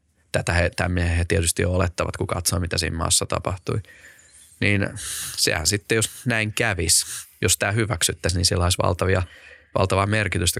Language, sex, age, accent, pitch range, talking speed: Finnish, male, 20-39, native, 90-100 Hz, 145 wpm